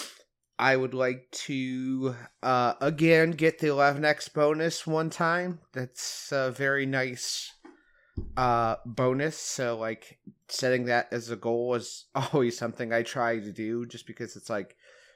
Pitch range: 115-145 Hz